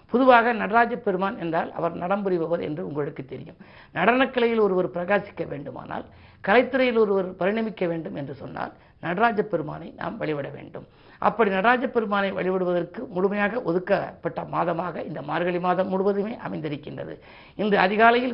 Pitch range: 170-205 Hz